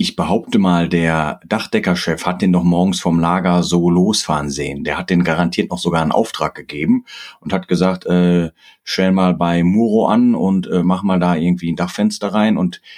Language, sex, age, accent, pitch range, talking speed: German, male, 40-59, German, 85-120 Hz, 195 wpm